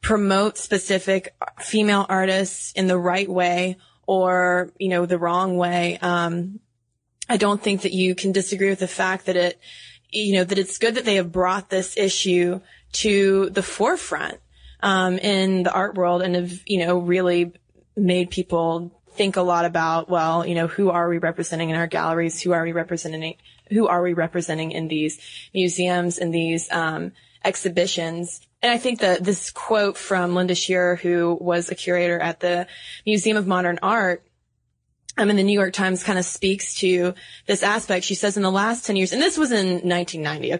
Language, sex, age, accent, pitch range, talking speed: English, female, 20-39, American, 175-195 Hz, 185 wpm